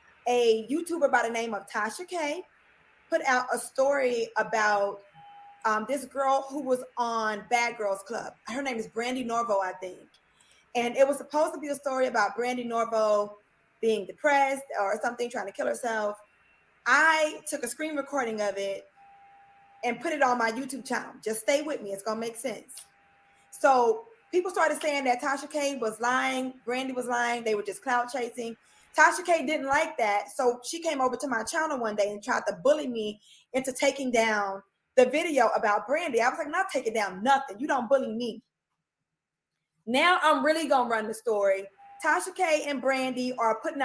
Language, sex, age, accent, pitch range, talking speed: English, female, 20-39, American, 225-285 Hz, 185 wpm